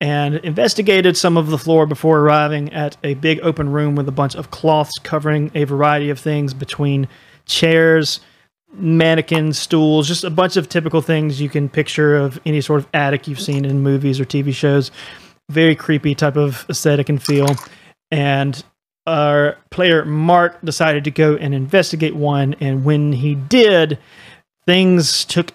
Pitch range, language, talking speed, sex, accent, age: 140-160 Hz, English, 165 wpm, male, American, 30-49